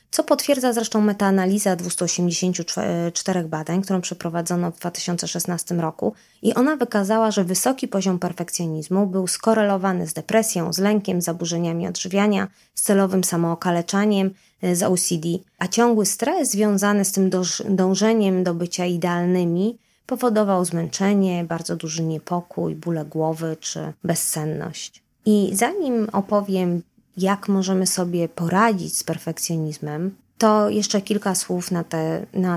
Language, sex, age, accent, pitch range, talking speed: Polish, female, 20-39, native, 170-205 Hz, 120 wpm